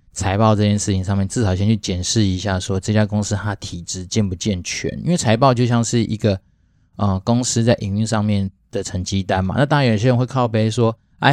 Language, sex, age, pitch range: Chinese, male, 20-39, 95-115 Hz